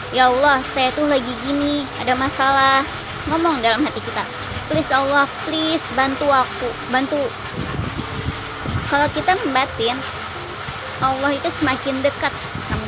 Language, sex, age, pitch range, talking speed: Indonesian, male, 20-39, 240-285 Hz, 120 wpm